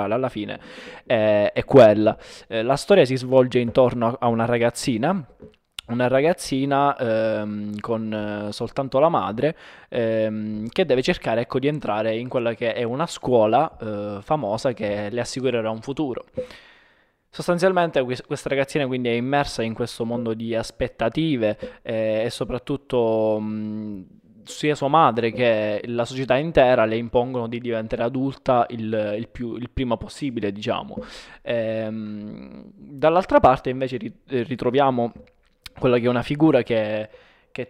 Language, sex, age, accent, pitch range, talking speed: Italian, male, 20-39, native, 110-135 Hz, 145 wpm